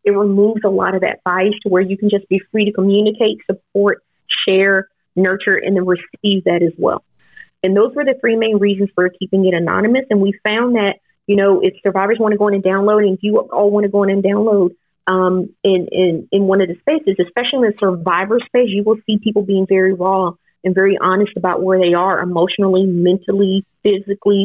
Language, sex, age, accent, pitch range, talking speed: English, female, 30-49, American, 190-220 Hz, 220 wpm